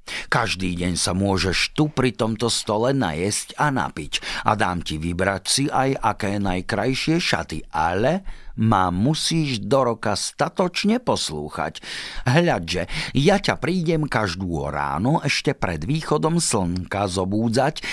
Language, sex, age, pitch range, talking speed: Slovak, male, 50-69, 95-145 Hz, 125 wpm